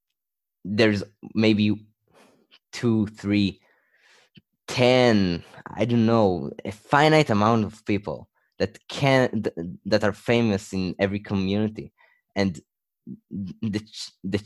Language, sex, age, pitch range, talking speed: English, male, 20-39, 90-110 Hz, 90 wpm